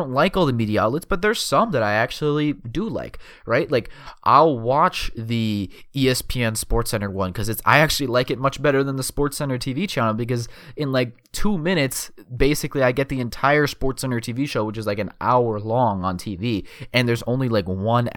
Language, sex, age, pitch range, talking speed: English, male, 20-39, 100-130 Hz, 200 wpm